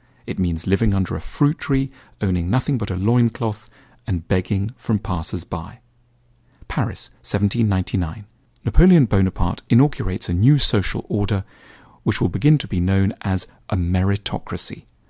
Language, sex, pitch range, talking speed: English, male, 95-135 Hz, 135 wpm